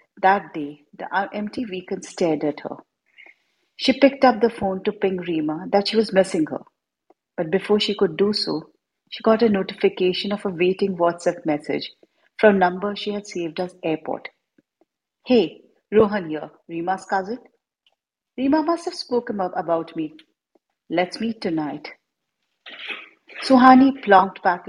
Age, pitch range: 50-69, 175-225 Hz